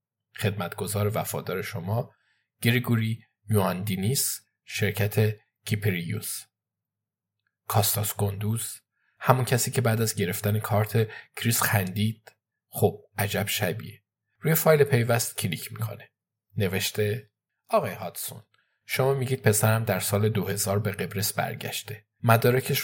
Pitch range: 105-125 Hz